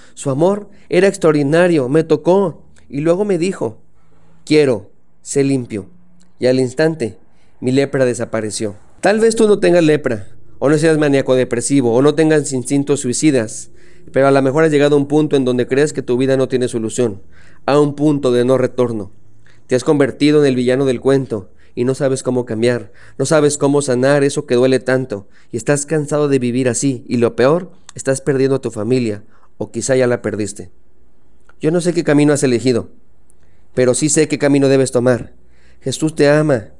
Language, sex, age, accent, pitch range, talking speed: Spanish, male, 40-59, Mexican, 120-150 Hz, 190 wpm